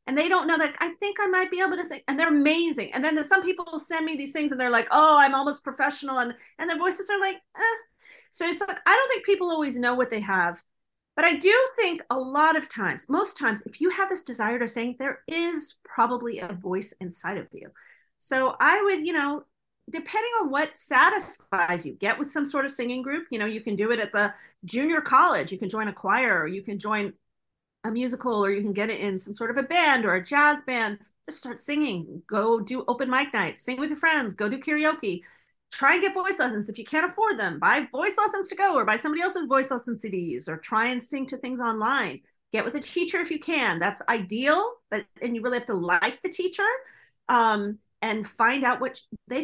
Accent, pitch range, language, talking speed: American, 220-325 Hz, English, 240 wpm